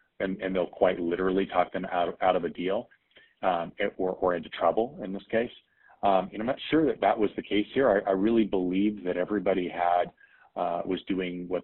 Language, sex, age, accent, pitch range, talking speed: English, male, 40-59, American, 90-105 Hz, 220 wpm